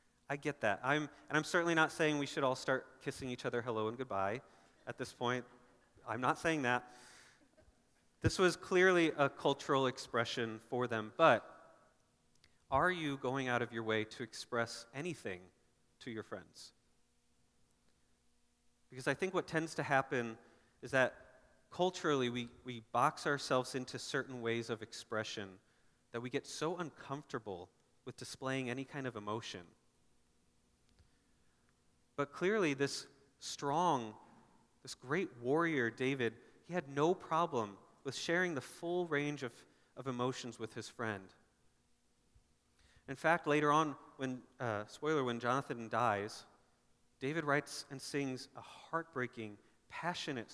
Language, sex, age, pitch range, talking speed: English, male, 30-49, 115-145 Hz, 140 wpm